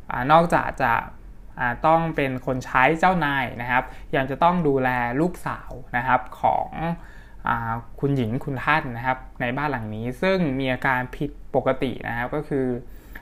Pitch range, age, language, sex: 125-155 Hz, 20-39, Thai, male